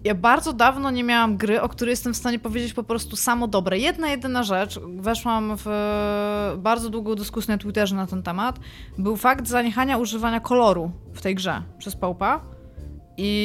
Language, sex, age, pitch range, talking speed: Polish, female, 20-39, 200-245 Hz, 180 wpm